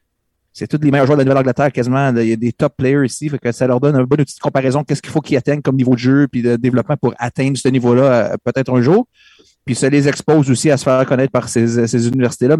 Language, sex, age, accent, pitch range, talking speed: French, male, 30-49, Canadian, 125-150 Hz, 280 wpm